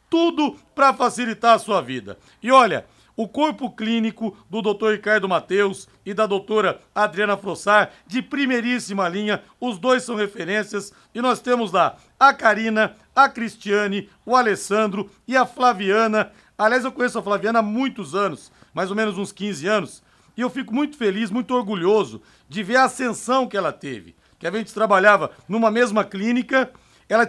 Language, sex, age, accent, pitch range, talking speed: Portuguese, male, 60-79, Brazilian, 200-245 Hz, 165 wpm